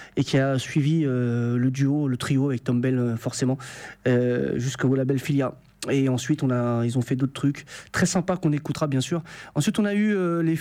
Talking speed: 215 wpm